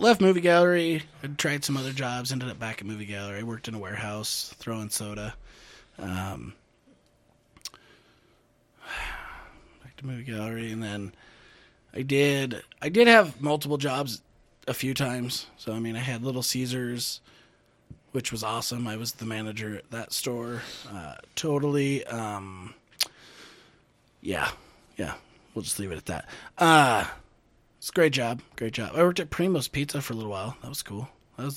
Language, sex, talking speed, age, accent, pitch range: English, male, 165 wpm, 20-39, American, 110-145 Hz